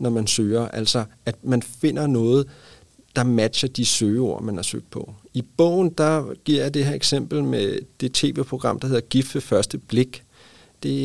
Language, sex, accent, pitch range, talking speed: Danish, male, native, 120-165 Hz, 180 wpm